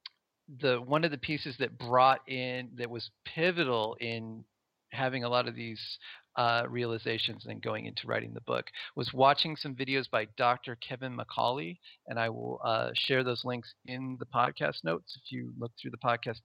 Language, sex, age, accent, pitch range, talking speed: English, male, 40-59, American, 115-135 Hz, 180 wpm